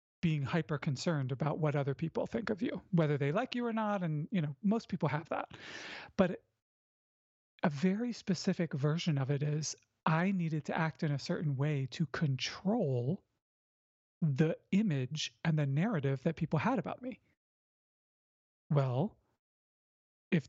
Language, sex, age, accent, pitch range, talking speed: English, male, 30-49, American, 150-200 Hz, 155 wpm